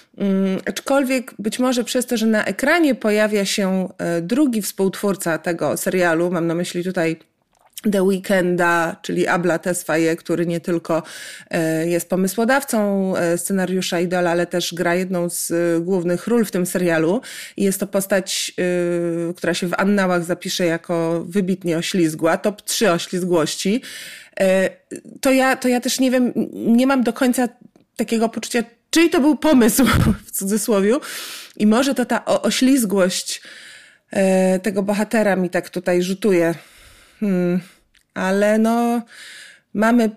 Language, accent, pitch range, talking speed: Polish, native, 175-220 Hz, 130 wpm